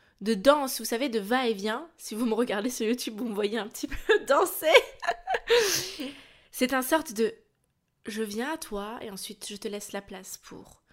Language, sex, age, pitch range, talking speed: French, female, 20-39, 180-230 Hz, 190 wpm